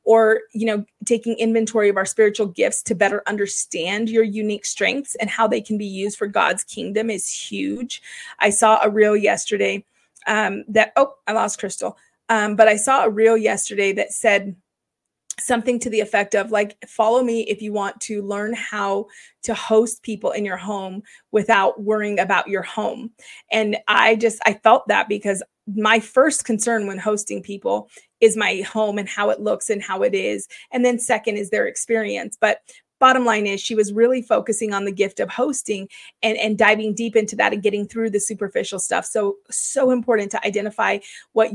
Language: English